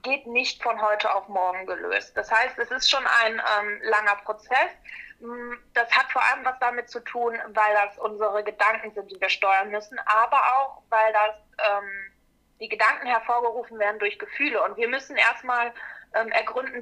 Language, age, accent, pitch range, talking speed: German, 20-39, German, 210-255 Hz, 180 wpm